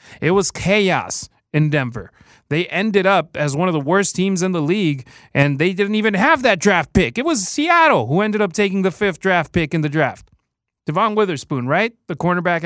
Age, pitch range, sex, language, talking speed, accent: 30-49, 145-200 Hz, male, English, 210 wpm, American